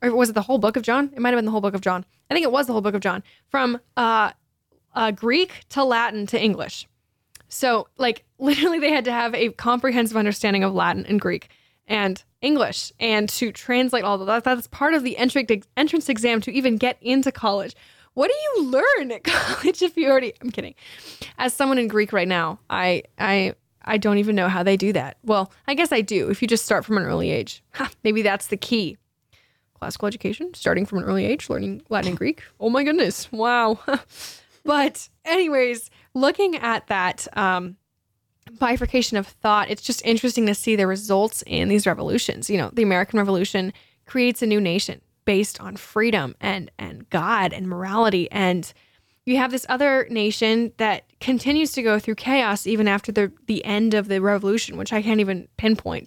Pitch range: 200-250 Hz